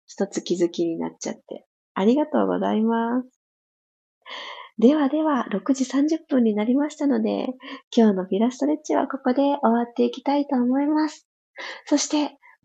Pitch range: 210-275 Hz